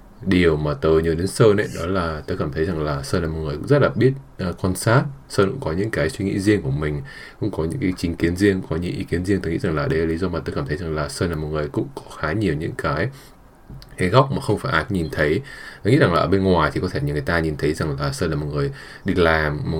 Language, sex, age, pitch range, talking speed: English, male, 20-39, 80-100 Hz, 310 wpm